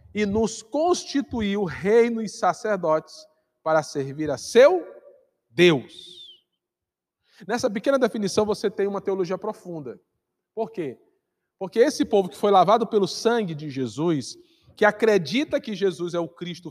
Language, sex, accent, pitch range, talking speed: Portuguese, male, Brazilian, 160-235 Hz, 135 wpm